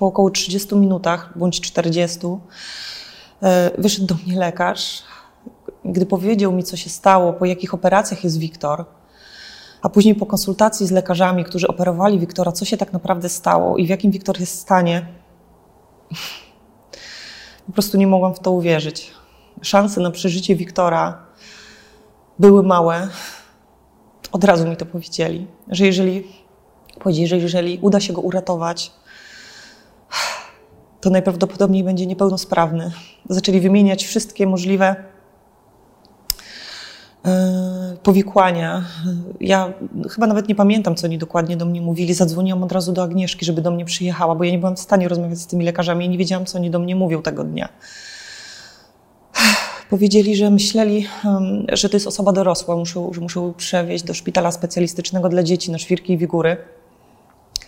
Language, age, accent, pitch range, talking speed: Polish, 20-39, native, 175-195 Hz, 145 wpm